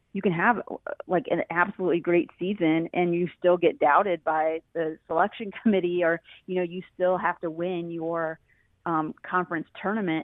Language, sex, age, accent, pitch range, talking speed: English, female, 30-49, American, 165-190 Hz, 170 wpm